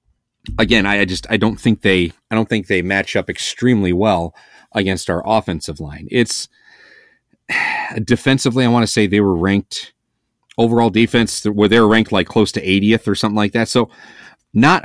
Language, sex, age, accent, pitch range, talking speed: English, male, 40-59, American, 95-125 Hz, 180 wpm